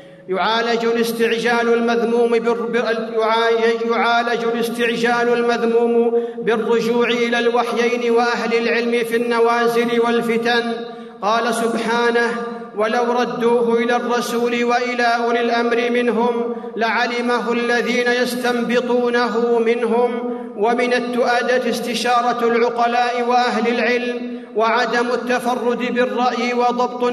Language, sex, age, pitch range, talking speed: Arabic, male, 50-69, 225-240 Hz, 75 wpm